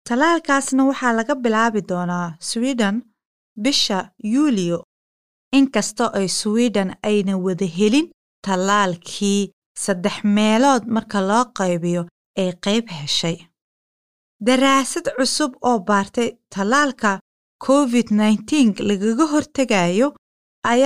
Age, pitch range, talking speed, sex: 30-49, 200-265 Hz, 100 wpm, female